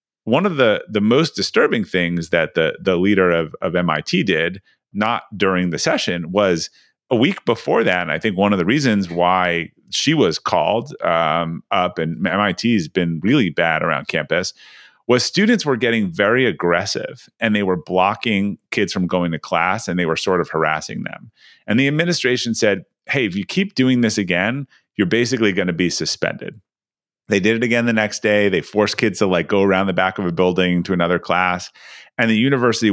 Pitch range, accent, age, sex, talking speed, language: 90-130 Hz, American, 30-49, male, 200 wpm, English